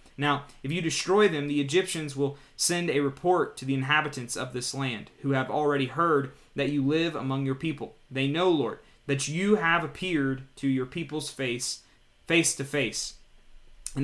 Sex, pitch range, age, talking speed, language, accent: male, 130-150 Hz, 20-39, 180 wpm, English, American